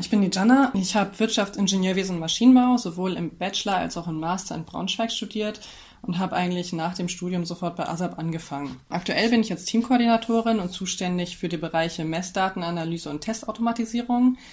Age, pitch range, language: 20-39, 170-195 Hz, German